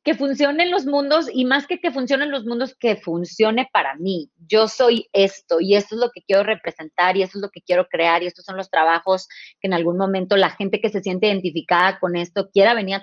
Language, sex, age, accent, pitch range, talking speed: Spanish, female, 30-49, Mexican, 185-230 Hz, 240 wpm